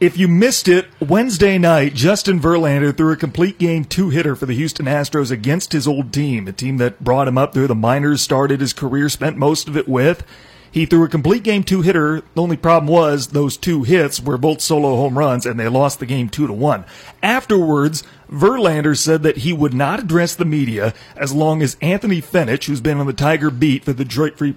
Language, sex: English, male